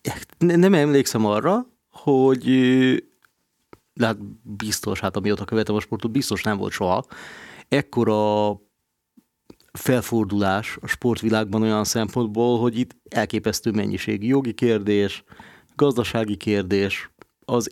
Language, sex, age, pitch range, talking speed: Hungarian, male, 30-49, 105-125 Hz, 105 wpm